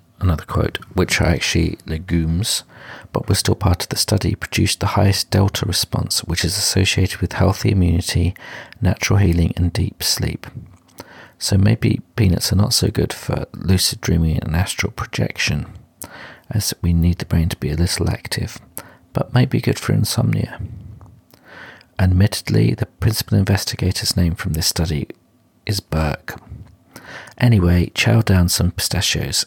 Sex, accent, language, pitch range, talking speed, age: male, British, English, 90-110 Hz, 150 wpm, 50-69